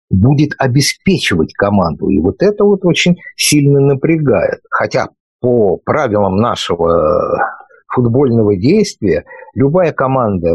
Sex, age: male, 50-69